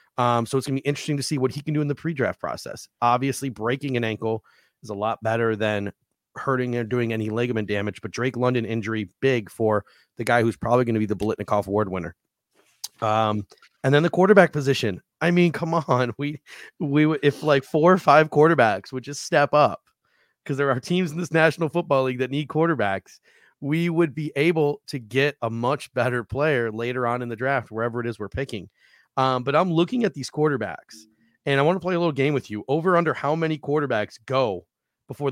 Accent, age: American, 30-49